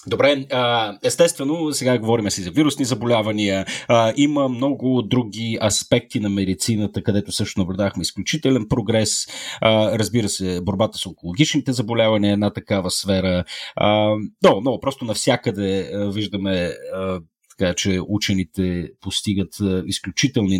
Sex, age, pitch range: male, 30-49, 95-125 Hz